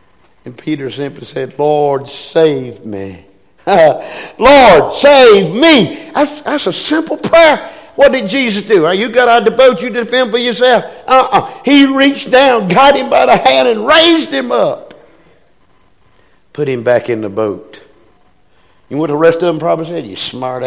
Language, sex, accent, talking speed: English, male, American, 170 wpm